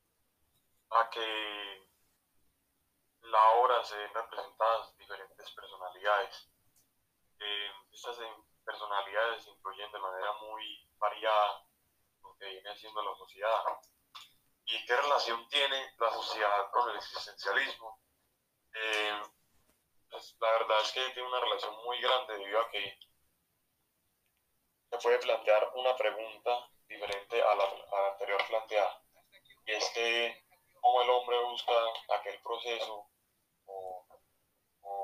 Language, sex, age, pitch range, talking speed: Spanish, male, 20-39, 100-120 Hz, 115 wpm